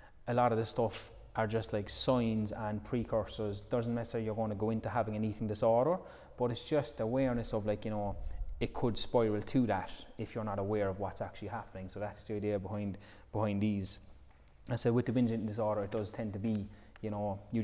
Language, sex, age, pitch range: English, male, 20-39, 100-115 Hz